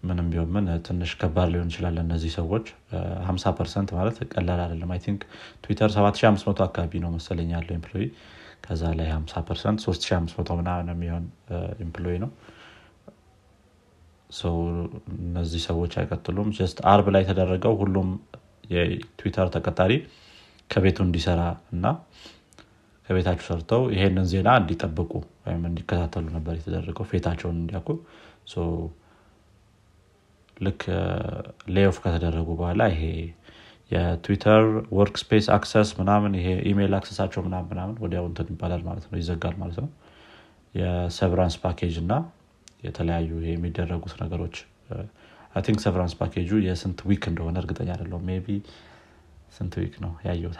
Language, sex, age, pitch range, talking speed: Amharic, male, 30-49, 85-100 Hz, 105 wpm